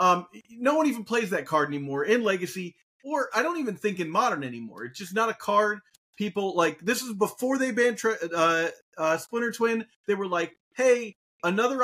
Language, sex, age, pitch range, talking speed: English, male, 30-49, 150-225 Hz, 200 wpm